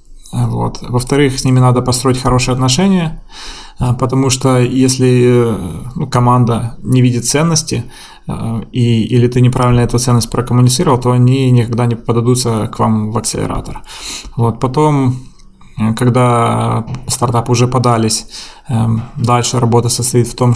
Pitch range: 115-125 Hz